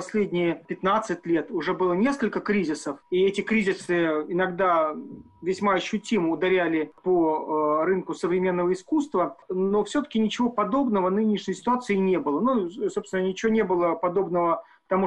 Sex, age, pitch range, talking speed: male, 40-59, 180-225 Hz, 130 wpm